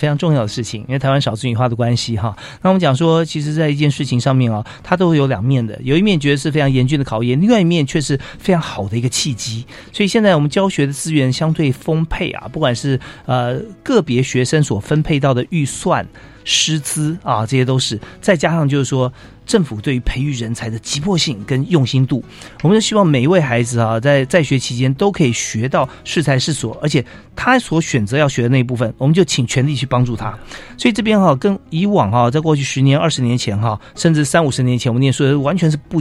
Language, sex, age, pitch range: Chinese, male, 40-59, 120-160 Hz